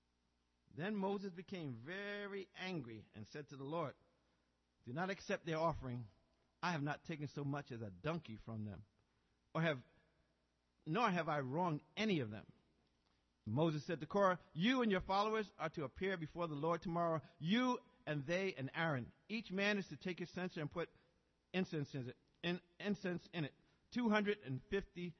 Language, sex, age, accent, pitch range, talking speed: English, male, 50-69, American, 140-195 Hz, 170 wpm